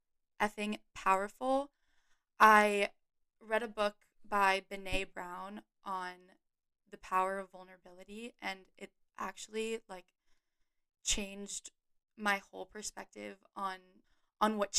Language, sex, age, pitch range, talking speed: English, female, 10-29, 195-235 Hz, 100 wpm